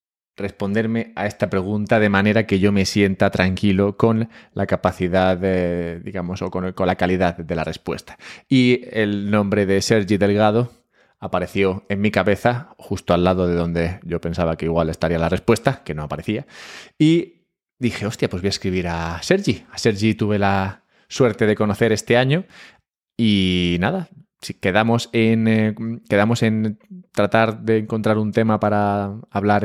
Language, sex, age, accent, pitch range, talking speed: Spanish, male, 20-39, Spanish, 95-110 Hz, 160 wpm